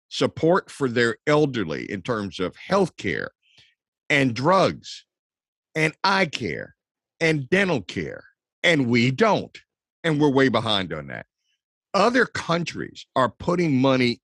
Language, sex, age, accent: English, male, 50-69, American